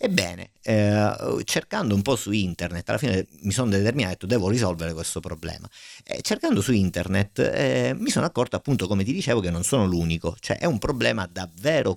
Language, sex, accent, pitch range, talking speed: Italian, male, native, 90-110 Hz, 195 wpm